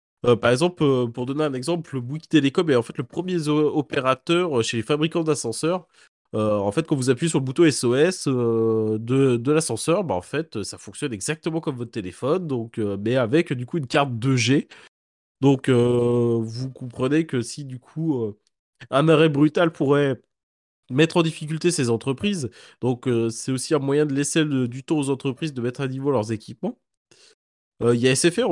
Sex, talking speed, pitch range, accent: male, 200 wpm, 125-160 Hz, French